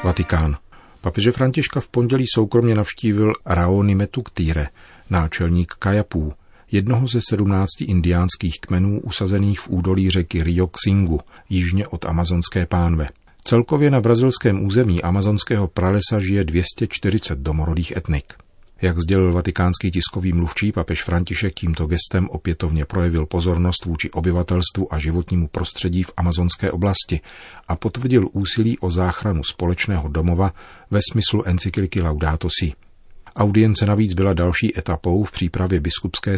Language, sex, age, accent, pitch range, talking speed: Czech, male, 40-59, native, 85-100 Hz, 120 wpm